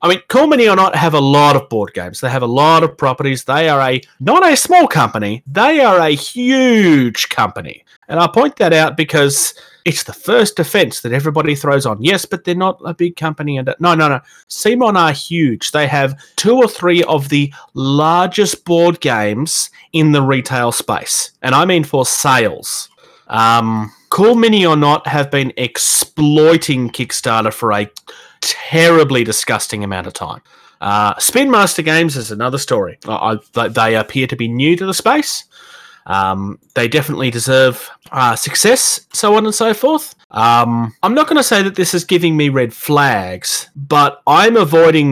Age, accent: 30-49, Australian